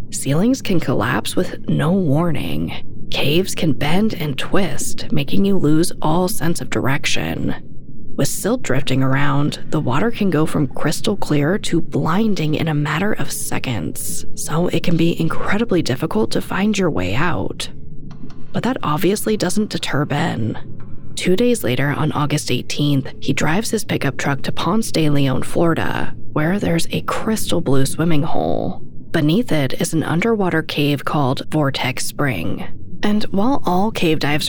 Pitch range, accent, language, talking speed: 140-190 Hz, American, English, 155 wpm